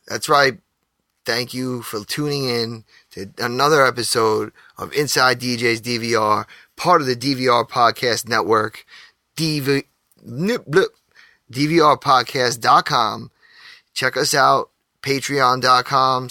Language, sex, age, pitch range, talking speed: English, male, 20-39, 120-135 Hz, 90 wpm